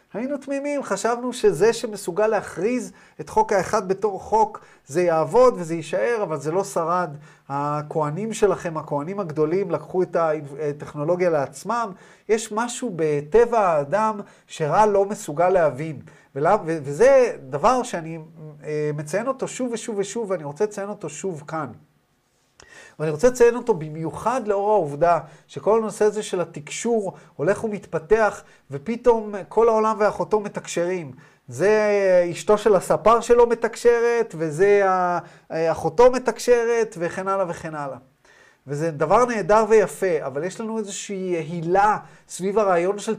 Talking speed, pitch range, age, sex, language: 130 wpm, 165-220 Hz, 30-49, male, Hebrew